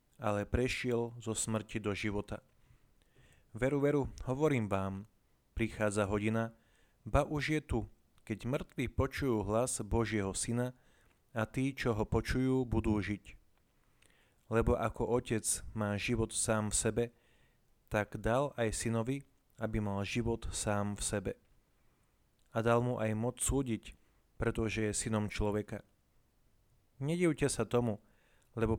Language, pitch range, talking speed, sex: Slovak, 105-125 Hz, 125 wpm, male